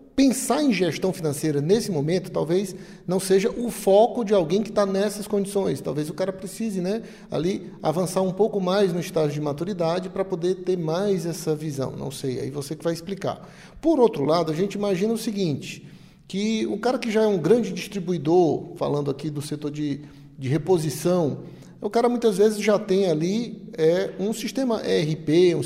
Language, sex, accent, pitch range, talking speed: Portuguese, male, Brazilian, 155-205 Hz, 180 wpm